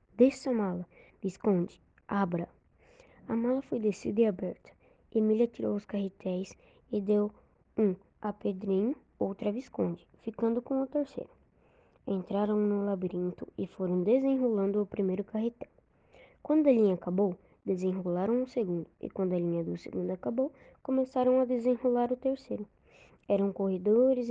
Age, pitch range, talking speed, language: 20-39, 190-240 Hz, 140 wpm, Portuguese